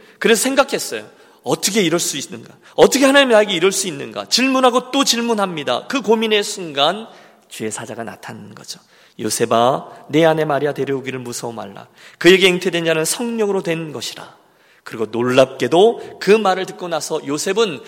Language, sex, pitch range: Korean, male, 145-210 Hz